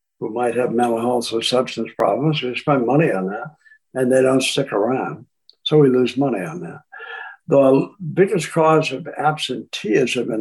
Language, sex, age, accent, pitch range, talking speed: English, male, 60-79, American, 125-170 Hz, 175 wpm